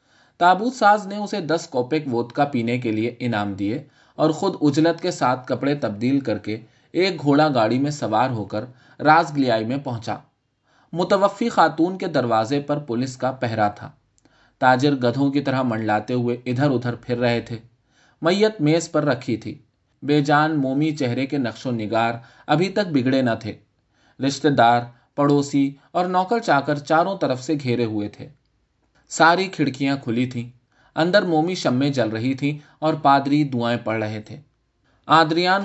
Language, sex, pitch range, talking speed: Urdu, male, 120-155 Hz, 170 wpm